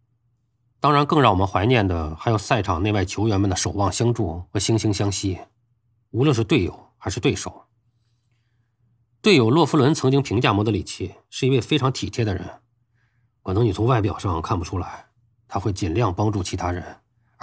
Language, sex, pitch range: Chinese, male, 100-130 Hz